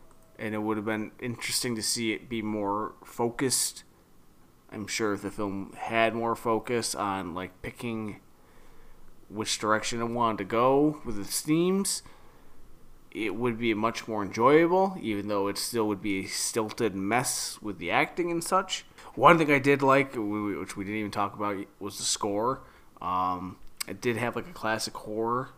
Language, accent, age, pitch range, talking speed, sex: English, American, 20-39, 100-125 Hz, 175 wpm, male